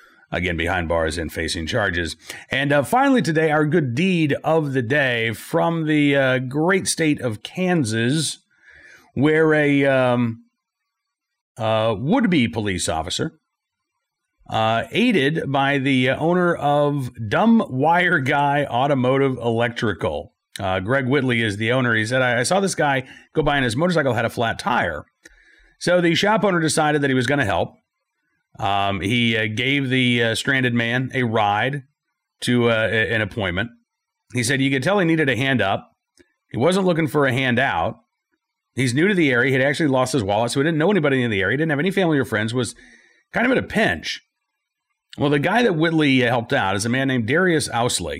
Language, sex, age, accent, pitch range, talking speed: English, male, 40-59, American, 115-155 Hz, 185 wpm